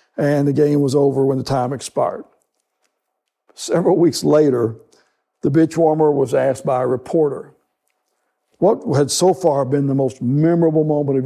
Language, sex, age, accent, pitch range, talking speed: English, male, 60-79, American, 140-170 Hz, 160 wpm